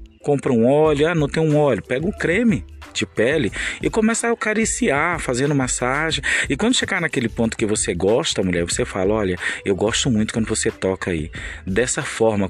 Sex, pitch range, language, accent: male, 105-165 Hz, Portuguese, Brazilian